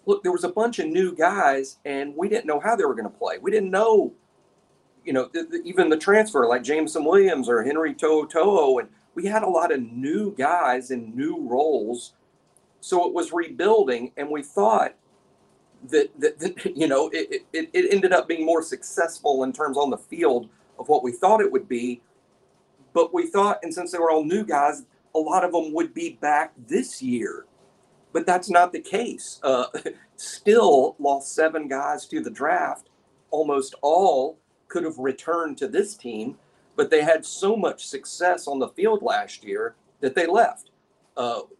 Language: English